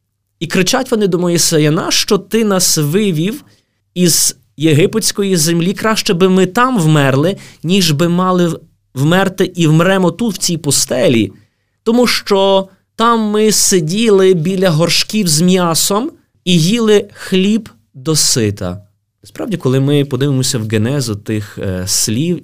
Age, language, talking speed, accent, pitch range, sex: 20-39, Ukrainian, 135 wpm, native, 130-200 Hz, male